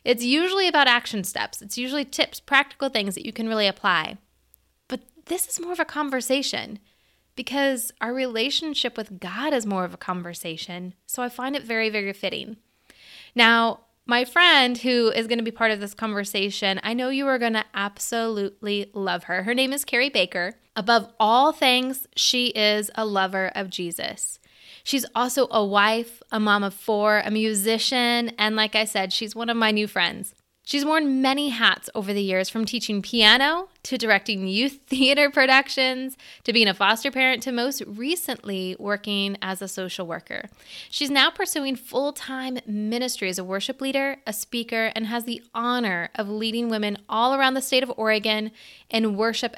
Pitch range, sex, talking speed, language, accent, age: 205-260 Hz, female, 180 wpm, English, American, 20-39